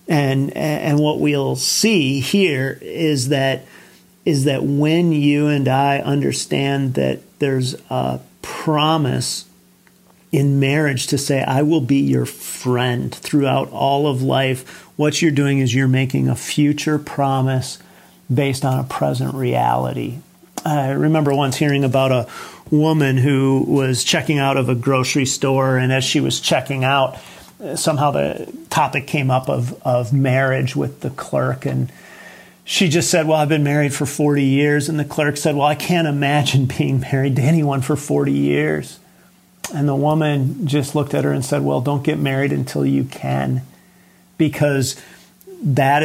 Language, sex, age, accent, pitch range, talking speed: English, male, 40-59, American, 130-145 Hz, 160 wpm